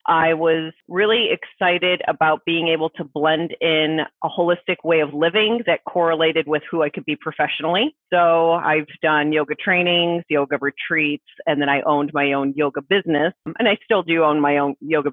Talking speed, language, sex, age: 185 wpm, English, female, 30-49